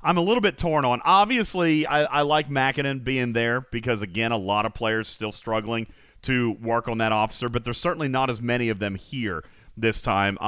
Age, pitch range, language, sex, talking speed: 40-59, 110-150 Hz, English, male, 210 wpm